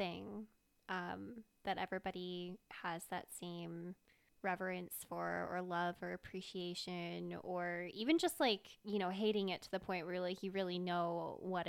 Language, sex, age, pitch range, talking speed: English, female, 20-39, 175-200 Hz, 155 wpm